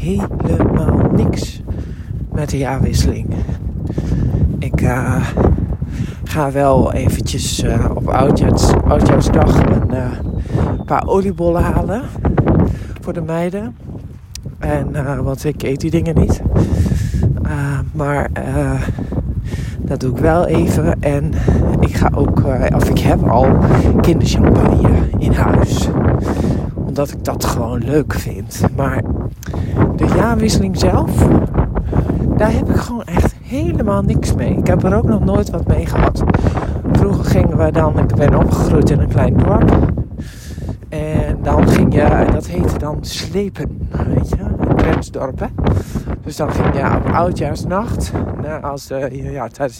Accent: Dutch